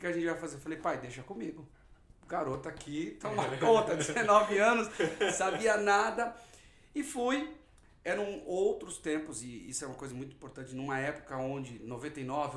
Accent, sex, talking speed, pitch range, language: Brazilian, male, 170 wpm, 150-230 Hz, Portuguese